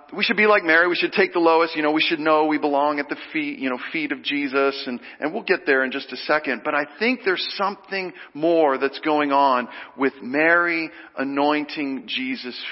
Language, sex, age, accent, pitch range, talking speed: English, male, 40-59, American, 150-230 Hz, 220 wpm